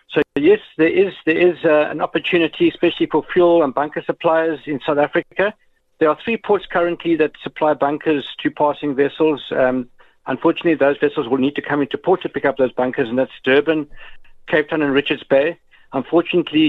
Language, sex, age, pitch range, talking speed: English, male, 60-79, 135-160 Hz, 190 wpm